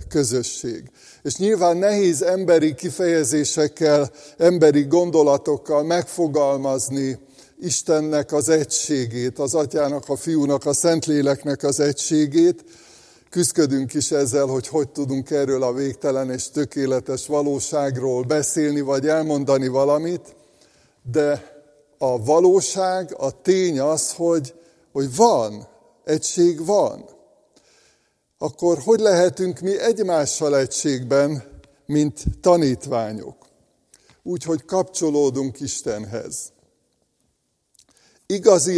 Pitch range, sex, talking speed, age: 140-170 Hz, male, 90 wpm, 60-79